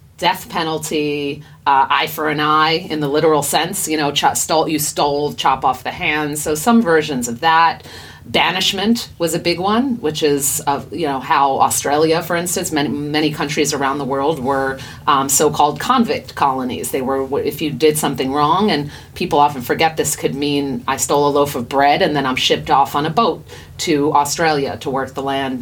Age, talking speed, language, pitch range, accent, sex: 30-49, 195 wpm, English, 140-175 Hz, American, female